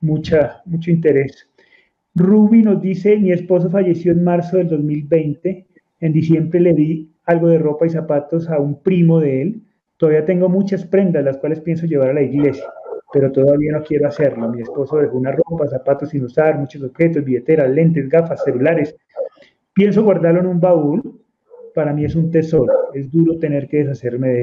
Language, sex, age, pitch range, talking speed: Spanish, male, 30-49, 140-185 Hz, 180 wpm